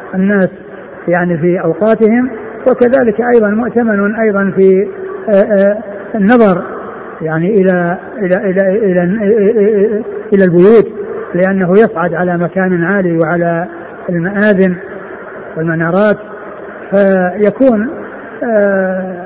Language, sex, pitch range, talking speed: Arabic, male, 185-210 Hz, 80 wpm